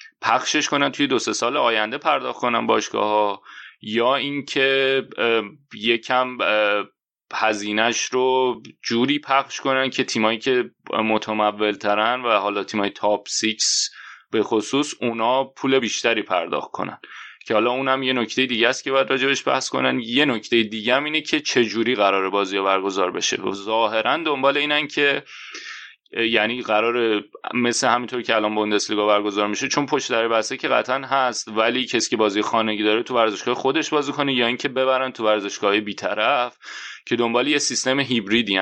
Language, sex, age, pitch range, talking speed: Persian, male, 30-49, 105-130 Hz, 160 wpm